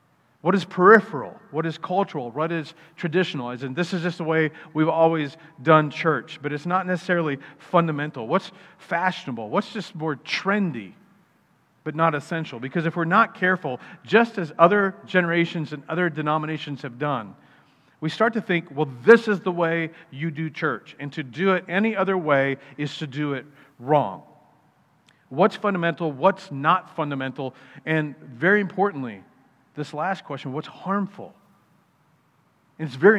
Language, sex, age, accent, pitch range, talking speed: English, male, 40-59, American, 145-180 Hz, 155 wpm